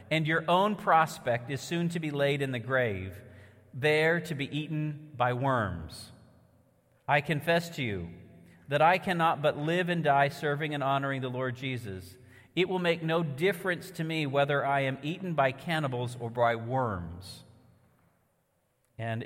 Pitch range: 105-140 Hz